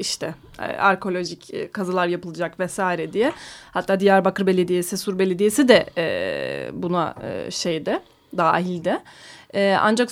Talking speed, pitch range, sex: 95 wpm, 205-260 Hz, female